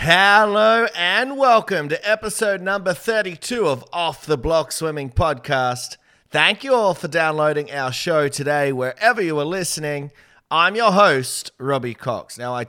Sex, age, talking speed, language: male, 30-49, 150 wpm, English